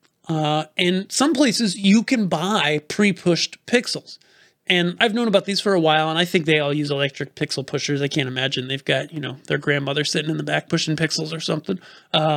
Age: 30-49